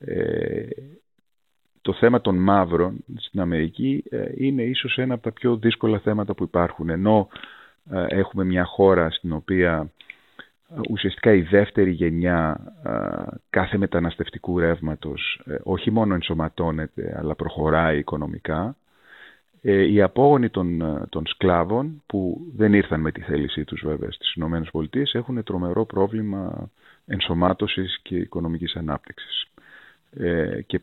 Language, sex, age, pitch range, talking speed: Greek, male, 30-49, 80-110 Hz, 115 wpm